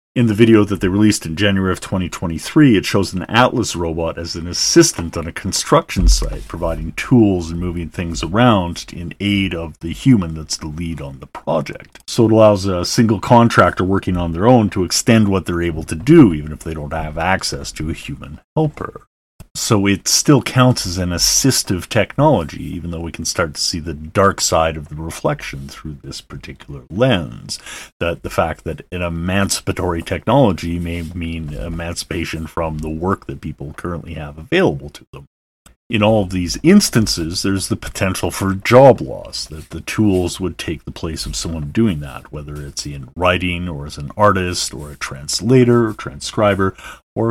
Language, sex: English, male